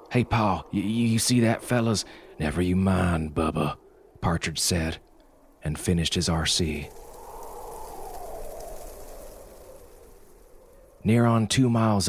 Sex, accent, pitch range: male, American, 85-105 Hz